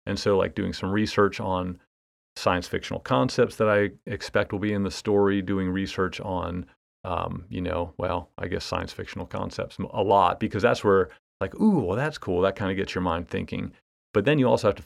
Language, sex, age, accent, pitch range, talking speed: English, male, 40-59, American, 90-105 Hz, 215 wpm